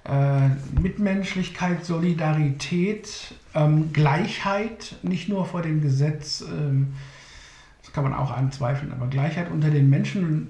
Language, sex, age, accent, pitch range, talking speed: German, male, 60-79, German, 140-185 Hz, 105 wpm